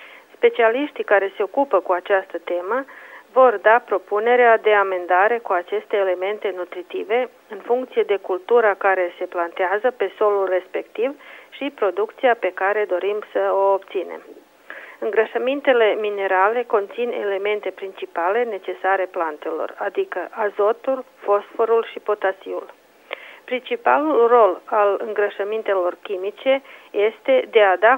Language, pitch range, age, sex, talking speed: Romanian, 195-265 Hz, 40-59, female, 120 wpm